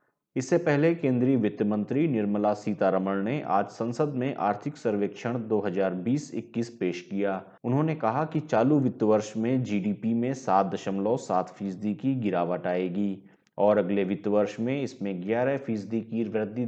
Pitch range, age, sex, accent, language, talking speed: 100-120 Hz, 30-49, male, native, Hindi, 150 wpm